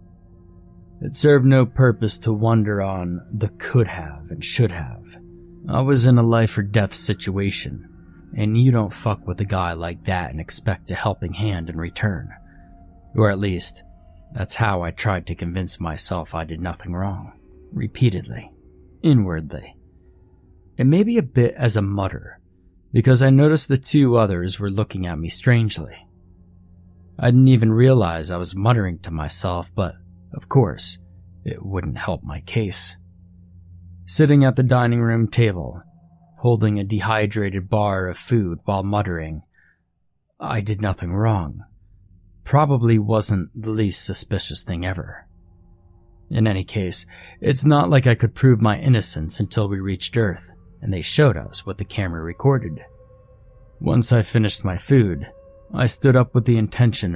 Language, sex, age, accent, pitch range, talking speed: English, male, 30-49, American, 90-115 Hz, 155 wpm